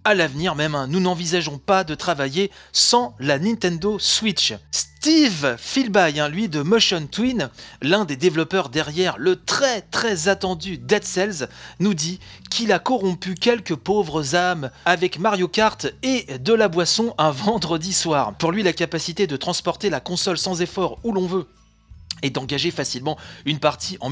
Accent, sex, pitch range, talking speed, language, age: French, male, 150-205 Hz, 160 wpm, French, 30-49